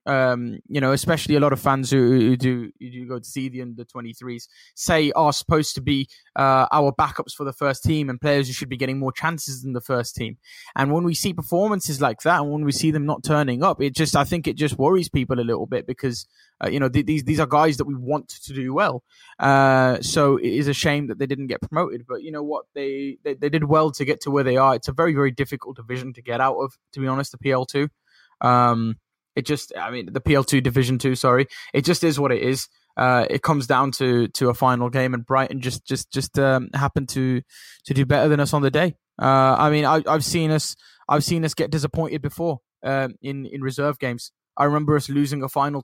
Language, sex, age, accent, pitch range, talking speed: English, male, 20-39, British, 130-150 Hz, 250 wpm